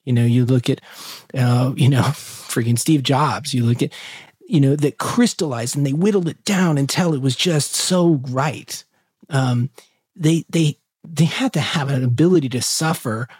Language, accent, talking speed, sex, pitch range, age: English, American, 180 wpm, male, 125-160 Hz, 30-49